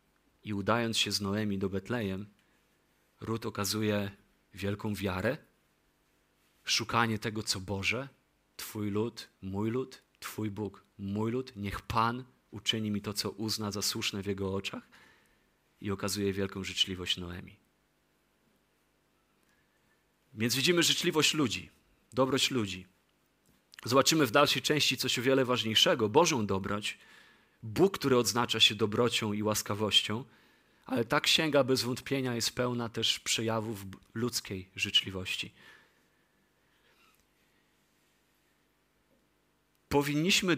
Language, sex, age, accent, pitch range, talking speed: Polish, male, 30-49, native, 100-125 Hz, 110 wpm